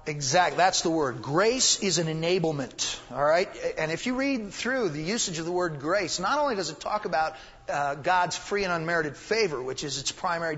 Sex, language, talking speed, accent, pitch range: male, English, 210 wpm, American, 165-220 Hz